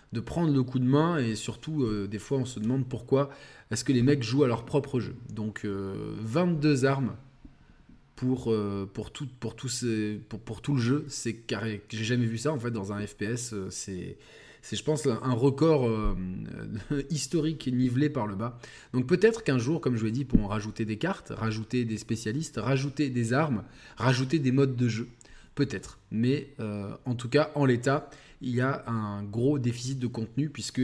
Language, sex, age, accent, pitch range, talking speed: French, male, 20-39, French, 110-140 Hz, 205 wpm